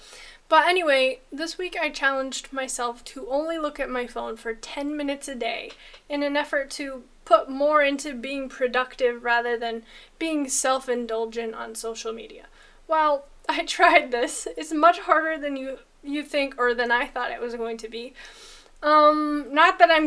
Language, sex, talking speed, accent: English, female, 175 wpm, American